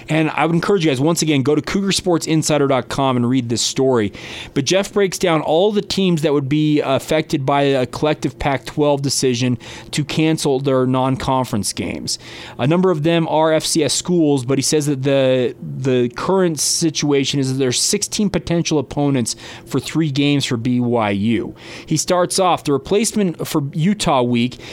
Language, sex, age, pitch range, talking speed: English, male, 30-49, 130-170 Hz, 170 wpm